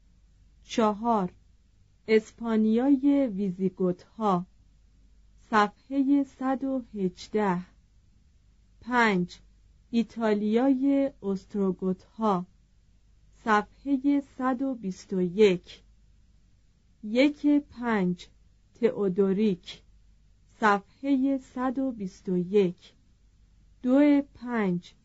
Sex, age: female, 40-59